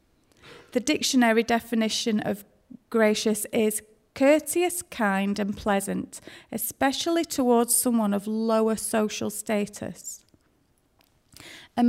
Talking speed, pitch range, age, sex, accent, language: 90 wpm, 210-250 Hz, 30-49, female, British, English